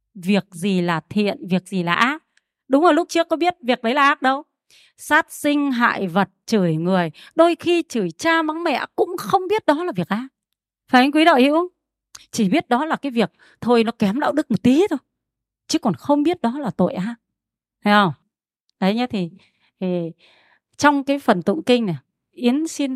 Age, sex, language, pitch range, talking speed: 30-49, female, Vietnamese, 205-290 Hz, 205 wpm